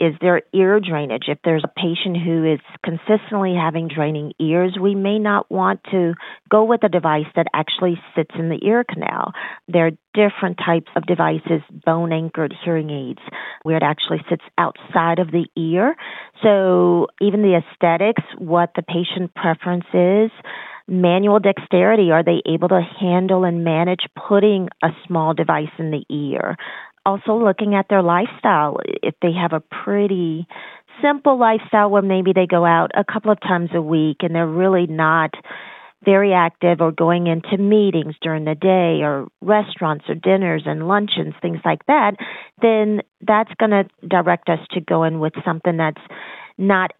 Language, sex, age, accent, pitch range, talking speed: English, female, 40-59, American, 165-200 Hz, 165 wpm